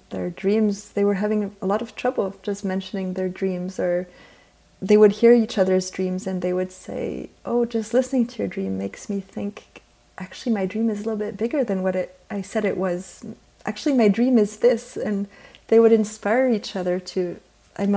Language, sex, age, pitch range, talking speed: English, female, 30-49, 185-215 Hz, 200 wpm